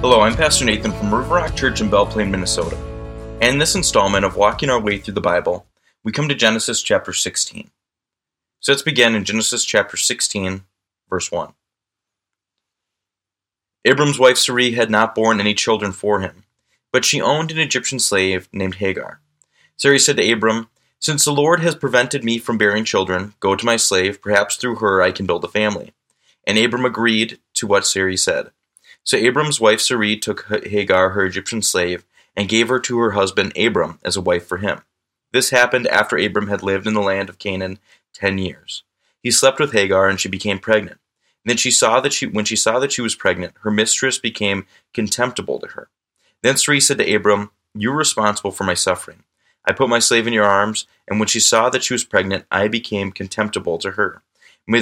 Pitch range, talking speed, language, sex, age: 100-120 Hz, 195 wpm, English, male, 20-39